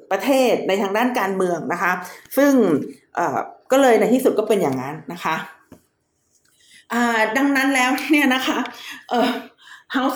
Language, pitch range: Thai, 185-255 Hz